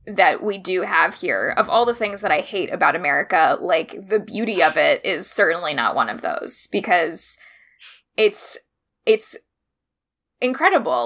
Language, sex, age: English, female, 10-29